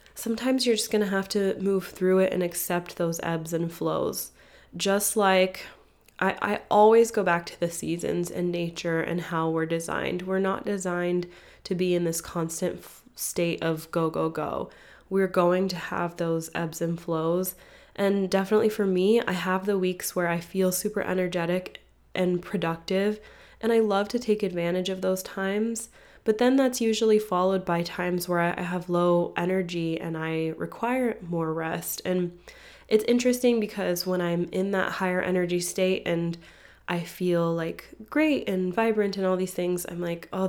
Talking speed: 175 wpm